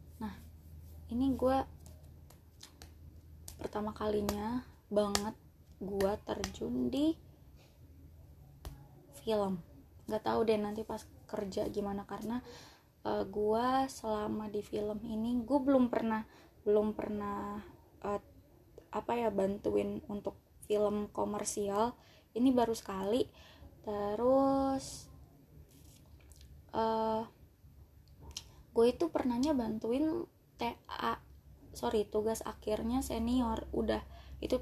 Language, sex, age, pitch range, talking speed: Indonesian, female, 20-39, 200-235 Hz, 90 wpm